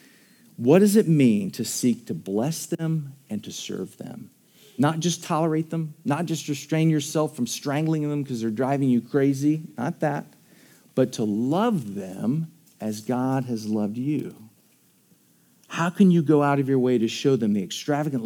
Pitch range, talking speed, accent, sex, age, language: 125-170 Hz, 175 wpm, American, male, 40-59, English